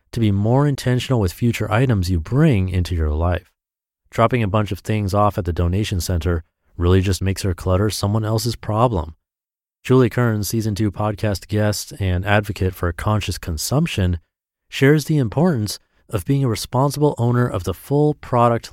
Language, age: English, 30-49